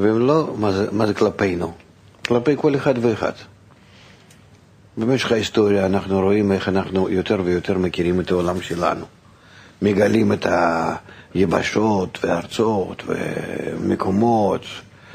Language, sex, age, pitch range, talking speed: Hebrew, male, 50-69, 95-115 Hz, 110 wpm